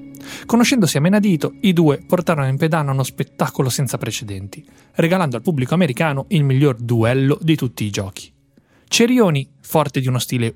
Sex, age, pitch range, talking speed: male, 30-49, 115-165 Hz, 160 wpm